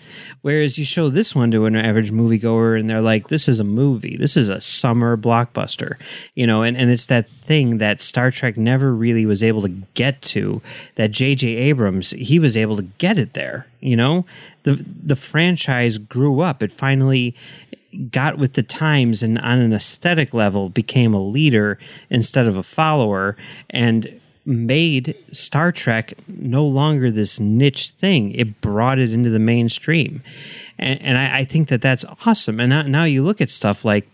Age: 30-49